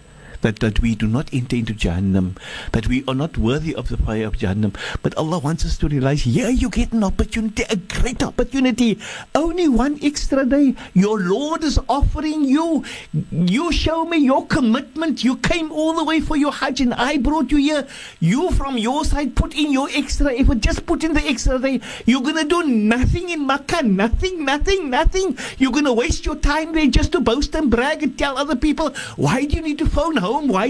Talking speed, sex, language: 210 wpm, male, English